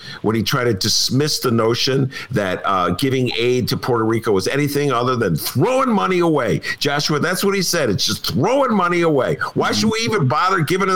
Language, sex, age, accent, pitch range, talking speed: English, male, 50-69, American, 135-195 Hz, 205 wpm